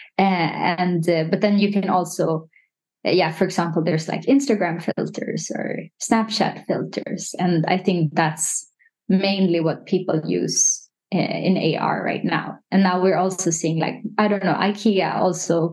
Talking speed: 155 wpm